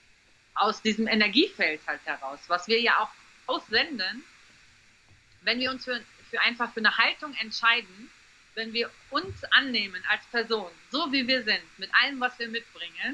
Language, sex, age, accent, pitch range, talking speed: German, female, 40-59, German, 195-245 Hz, 160 wpm